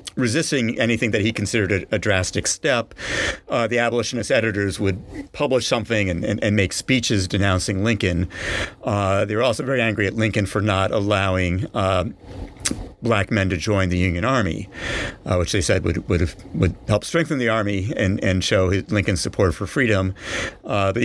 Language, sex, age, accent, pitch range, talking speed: English, male, 50-69, American, 95-115 Hz, 185 wpm